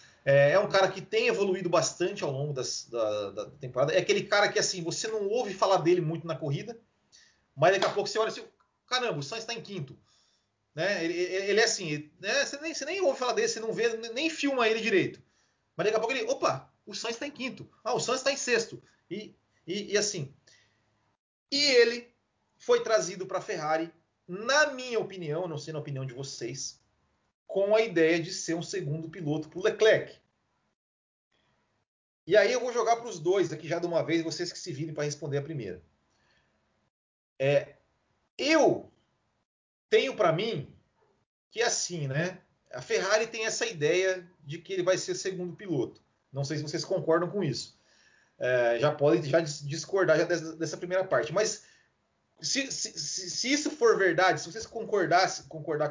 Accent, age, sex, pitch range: Brazilian, 30-49, male, 155-225 Hz